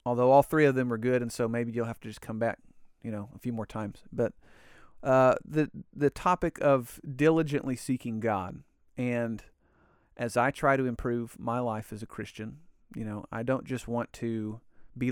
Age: 40-59